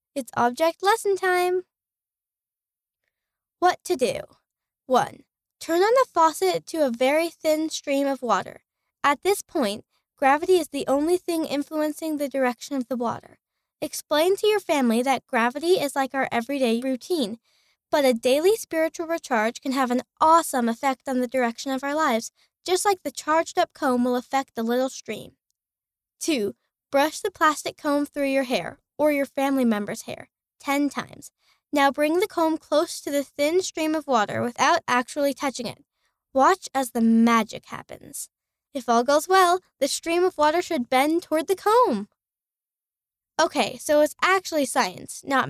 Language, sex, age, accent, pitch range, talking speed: English, female, 10-29, American, 260-330 Hz, 165 wpm